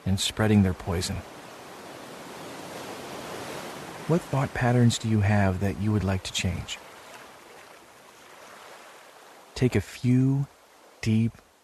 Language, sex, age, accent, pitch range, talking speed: English, male, 40-59, American, 95-115 Hz, 105 wpm